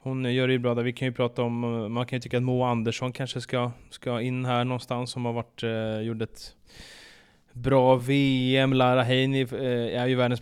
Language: Swedish